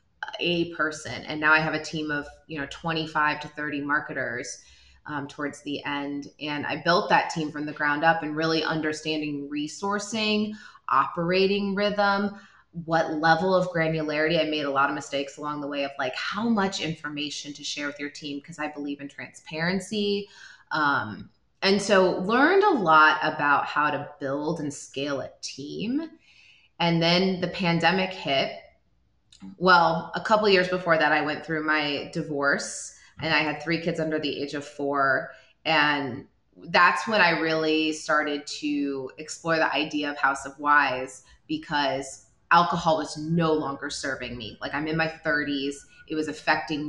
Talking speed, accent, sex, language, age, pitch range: 170 wpm, American, female, English, 20-39, 145-165 Hz